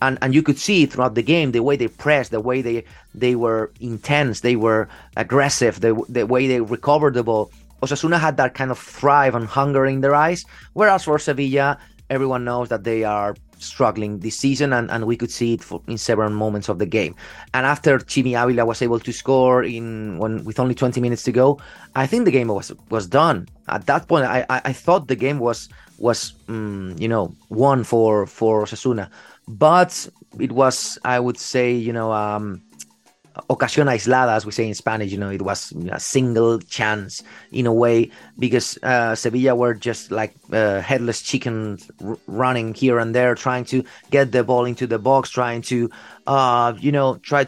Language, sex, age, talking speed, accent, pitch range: English, male, 30-49, 195 wpm, Spanish, 115-135 Hz